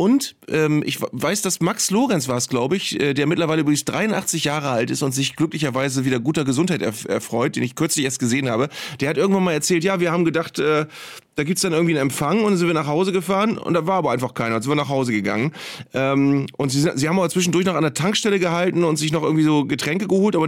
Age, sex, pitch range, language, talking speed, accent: 30-49, male, 135-175 Hz, German, 245 wpm, German